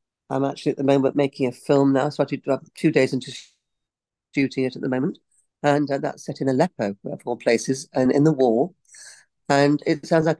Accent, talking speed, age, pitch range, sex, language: British, 225 wpm, 50-69, 130-150 Hz, female, English